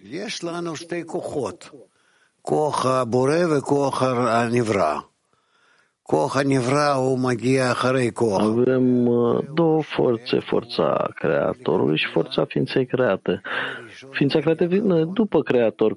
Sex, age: male, 50-69